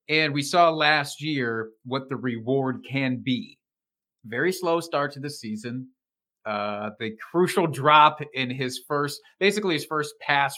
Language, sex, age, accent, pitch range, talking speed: English, male, 40-59, American, 125-160 Hz, 155 wpm